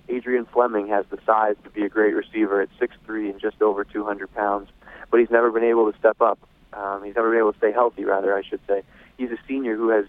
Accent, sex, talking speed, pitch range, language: American, male, 250 wpm, 100-120 Hz, English